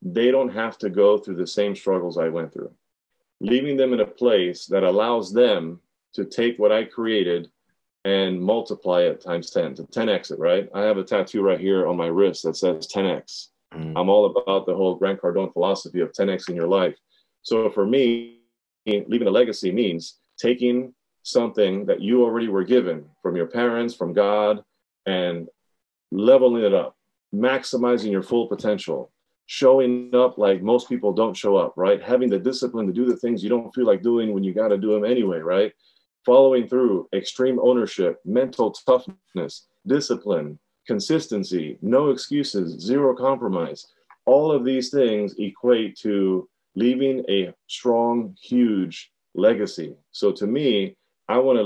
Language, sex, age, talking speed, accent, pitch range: English, male, 40-59, 170 wpm, American, 100-125 Hz